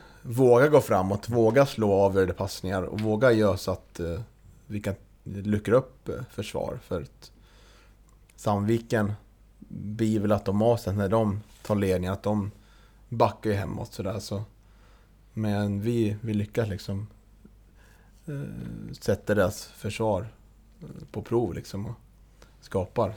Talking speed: 115 wpm